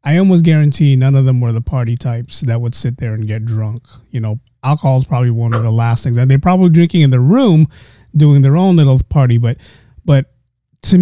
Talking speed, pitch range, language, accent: 230 wpm, 125-170 Hz, English, American